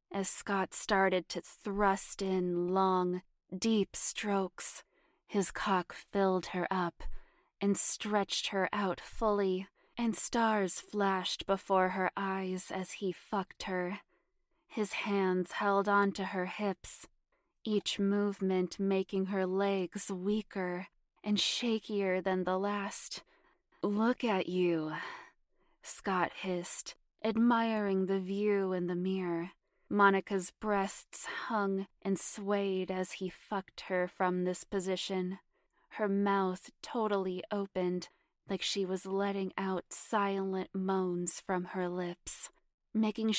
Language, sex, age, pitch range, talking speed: English, female, 20-39, 185-215 Hz, 115 wpm